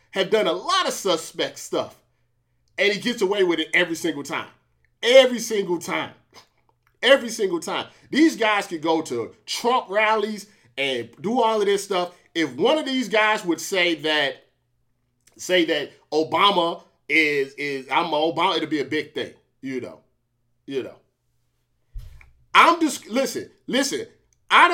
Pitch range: 160-260 Hz